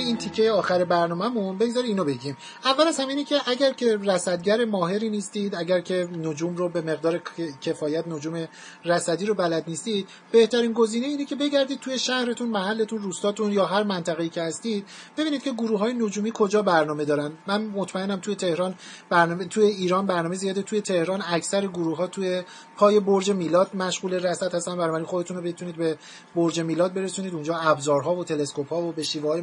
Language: Persian